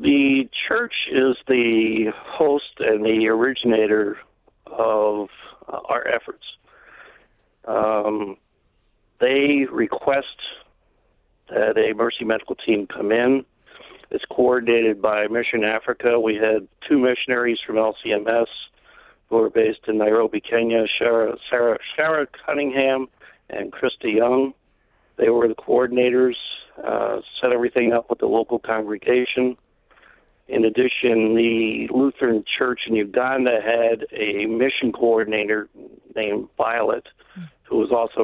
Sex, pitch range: male, 110-125 Hz